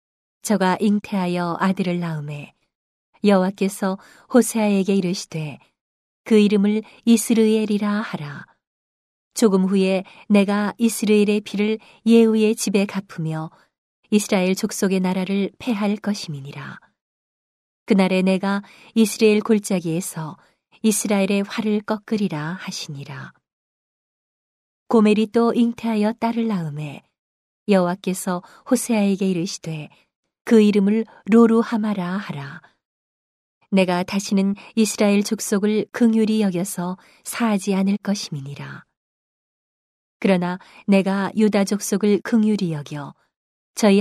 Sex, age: female, 40-59